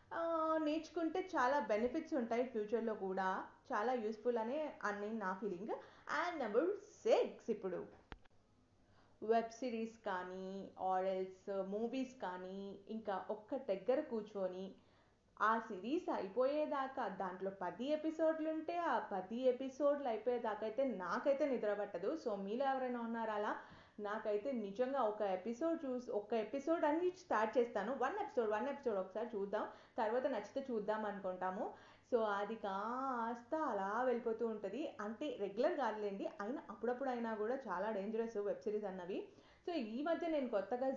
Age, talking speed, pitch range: 30-49, 115 wpm, 205-280 Hz